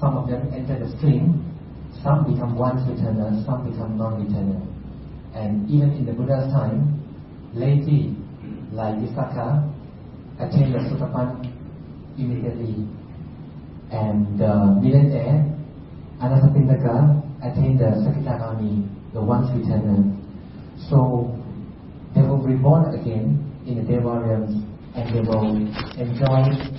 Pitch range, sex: 110-140 Hz, male